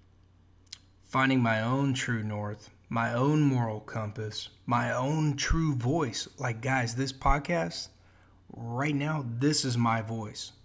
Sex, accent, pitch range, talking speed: male, American, 105-140 Hz, 130 wpm